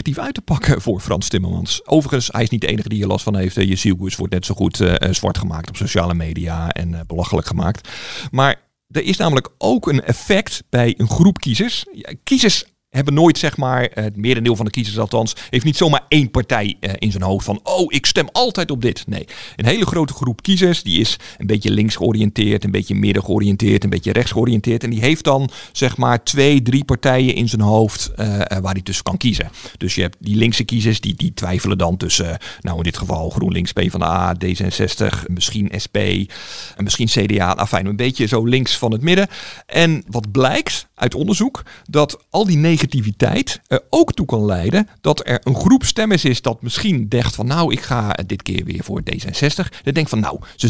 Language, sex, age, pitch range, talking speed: Dutch, male, 50-69, 100-140 Hz, 210 wpm